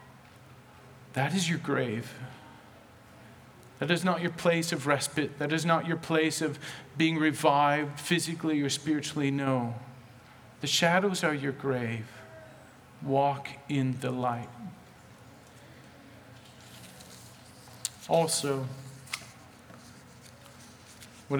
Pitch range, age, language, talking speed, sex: 125-185 Hz, 40-59, English, 95 wpm, male